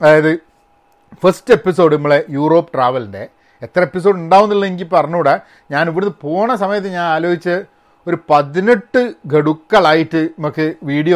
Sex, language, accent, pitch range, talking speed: male, Malayalam, native, 140-185 Hz, 125 wpm